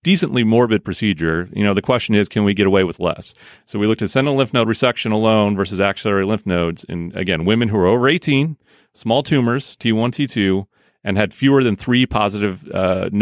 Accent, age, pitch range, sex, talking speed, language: American, 30-49, 90-110 Hz, male, 205 wpm, English